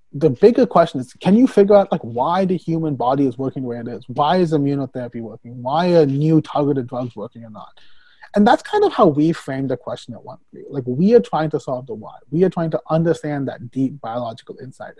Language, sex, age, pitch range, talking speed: English, male, 30-49, 135-180 Hz, 230 wpm